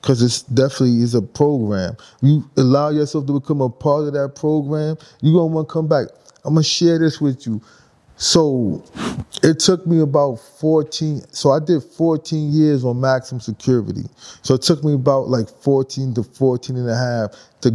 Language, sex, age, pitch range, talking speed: English, male, 20-39, 125-150 Hz, 195 wpm